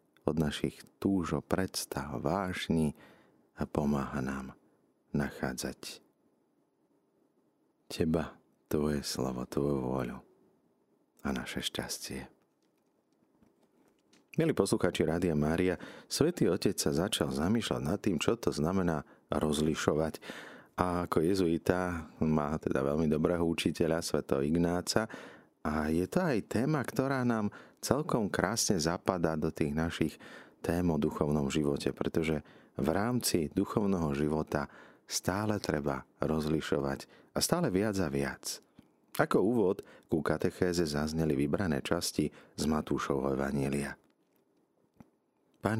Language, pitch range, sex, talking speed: Slovak, 75-90 Hz, male, 110 wpm